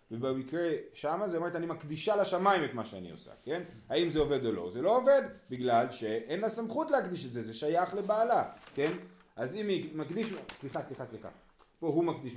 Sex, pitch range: male, 120-170 Hz